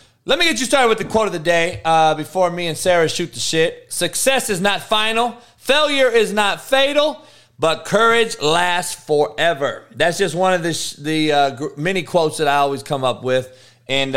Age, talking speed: 30-49, 200 wpm